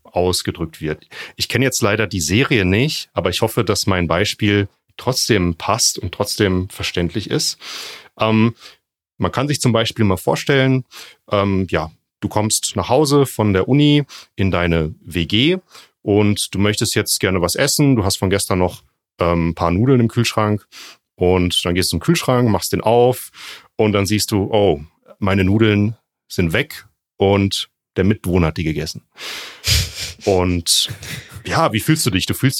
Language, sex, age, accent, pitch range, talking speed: German, male, 40-59, German, 95-125 Hz, 170 wpm